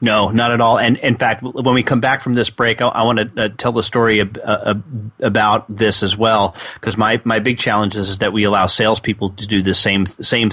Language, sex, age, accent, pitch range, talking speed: English, male, 30-49, American, 110-145 Hz, 245 wpm